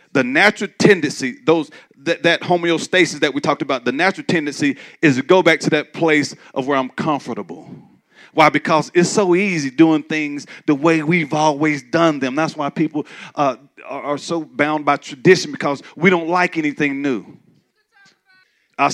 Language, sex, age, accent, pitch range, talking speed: English, male, 40-59, American, 140-175 Hz, 170 wpm